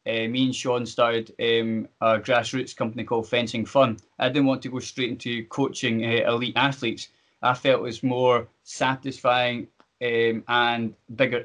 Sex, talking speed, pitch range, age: male, 170 wpm, 115-135 Hz, 20-39